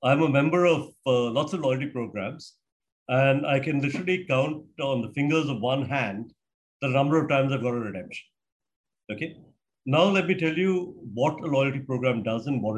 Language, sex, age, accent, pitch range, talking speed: English, male, 50-69, Indian, 125-170 Hz, 195 wpm